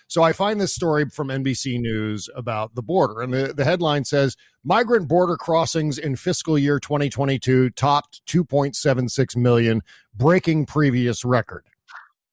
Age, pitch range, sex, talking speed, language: 50-69, 130-180 Hz, male, 140 wpm, English